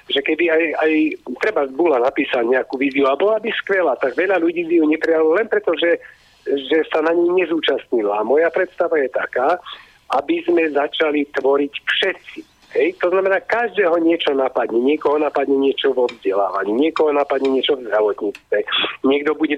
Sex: male